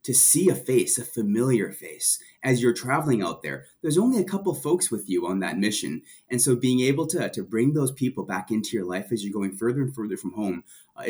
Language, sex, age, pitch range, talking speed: English, male, 30-49, 105-160 Hz, 240 wpm